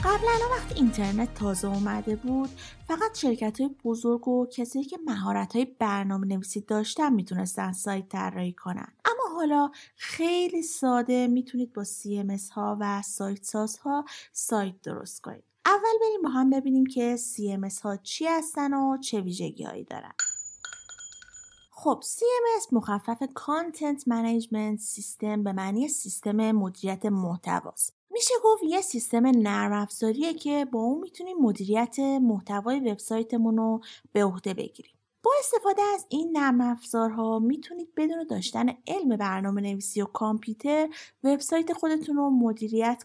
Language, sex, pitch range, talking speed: Persian, female, 210-290 Hz, 135 wpm